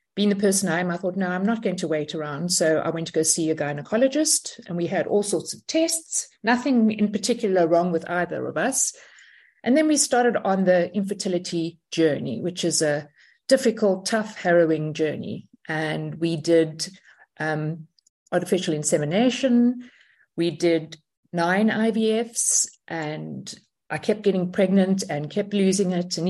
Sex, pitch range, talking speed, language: female, 165-215 Hz, 165 wpm, English